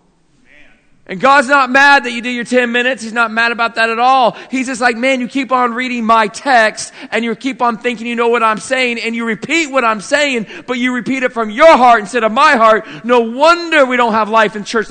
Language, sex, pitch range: English, male, 205-245 Hz